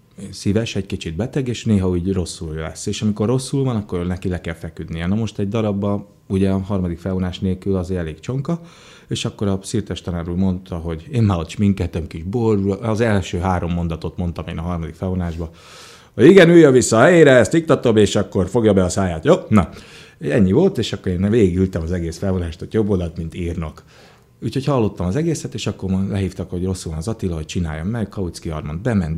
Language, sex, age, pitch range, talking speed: Hungarian, male, 30-49, 90-110 Hz, 210 wpm